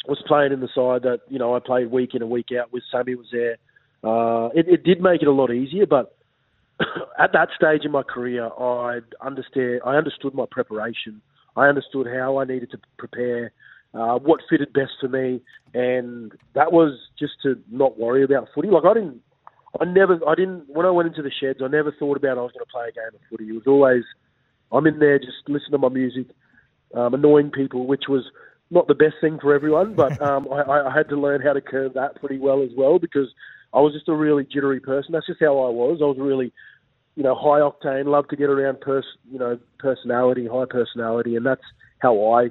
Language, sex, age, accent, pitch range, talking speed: English, male, 30-49, Australian, 125-145 Hz, 225 wpm